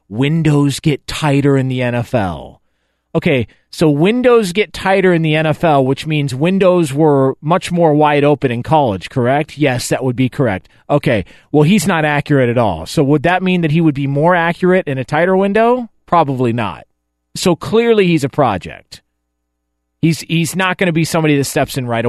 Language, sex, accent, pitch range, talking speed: English, male, American, 120-165 Hz, 185 wpm